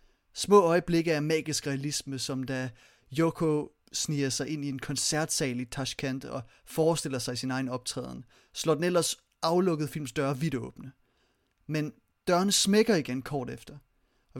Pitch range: 130-160 Hz